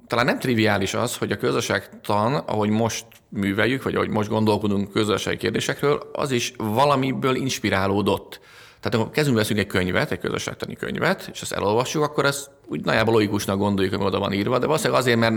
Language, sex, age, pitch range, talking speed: Hungarian, male, 30-49, 95-120 Hz, 175 wpm